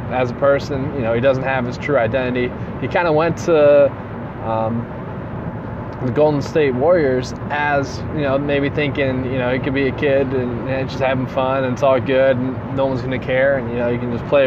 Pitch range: 120-135 Hz